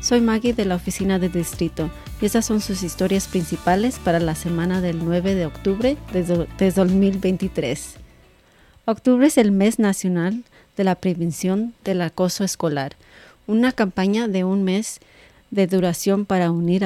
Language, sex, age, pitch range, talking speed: English, female, 40-59, 170-200 Hz, 155 wpm